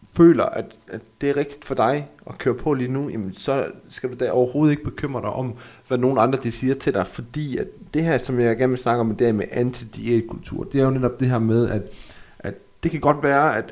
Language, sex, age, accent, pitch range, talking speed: Danish, male, 30-49, native, 115-135 Hz, 245 wpm